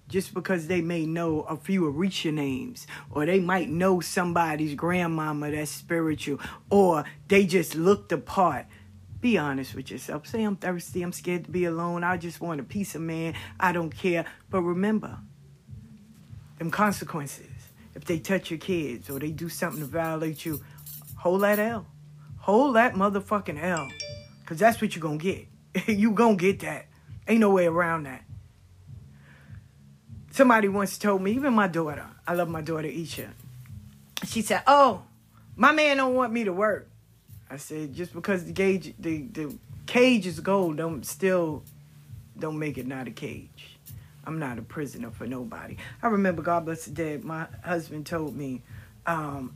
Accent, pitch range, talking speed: American, 145-190 Hz, 175 wpm